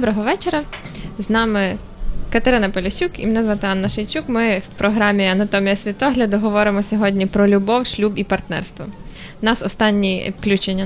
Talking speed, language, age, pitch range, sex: 145 wpm, Ukrainian, 20-39, 195-220 Hz, female